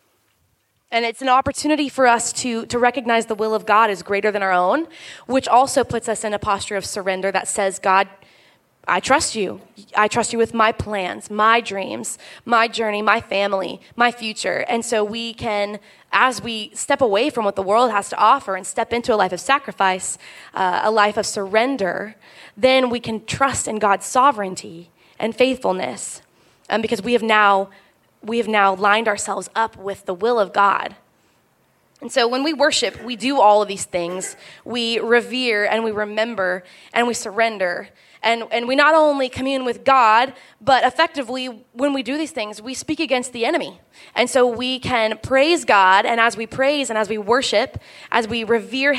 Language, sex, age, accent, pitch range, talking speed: English, female, 20-39, American, 205-245 Hz, 190 wpm